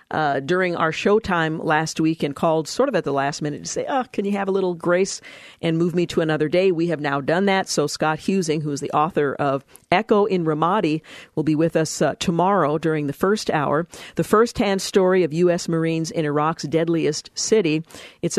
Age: 50-69